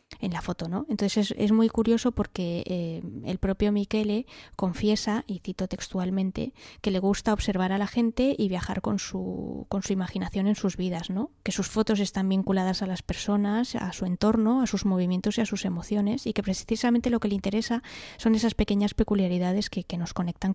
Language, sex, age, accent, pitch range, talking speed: Spanish, female, 20-39, Spanish, 180-210 Hz, 200 wpm